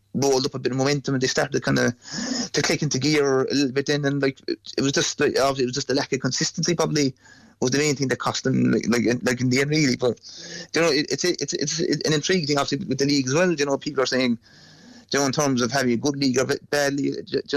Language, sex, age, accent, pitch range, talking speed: English, male, 30-49, British, 130-150 Hz, 295 wpm